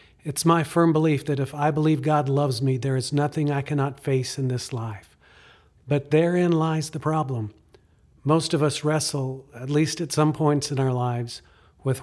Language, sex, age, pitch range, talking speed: English, male, 50-69, 130-150 Hz, 190 wpm